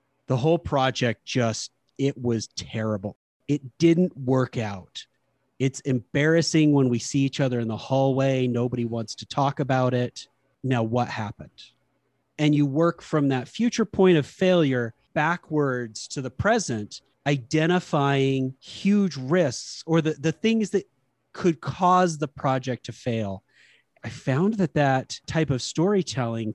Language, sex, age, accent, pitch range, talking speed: English, male, 30-49, American, 120-150 Hz, 145 wpm